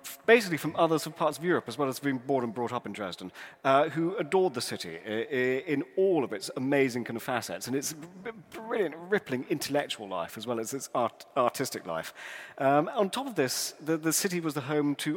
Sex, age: male, 40-59